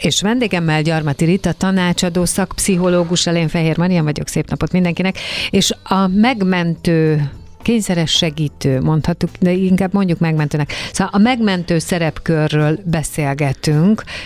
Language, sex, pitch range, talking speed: Hungarian, female, 150-180 Hz, 120 wpm